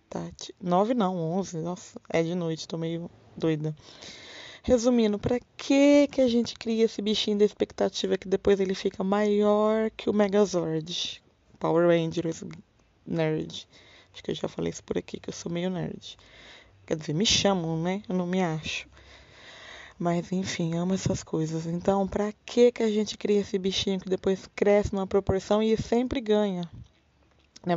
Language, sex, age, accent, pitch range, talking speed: Portuguese, female, 20-39, Brazilian, 175-220 Hz, 160 wpm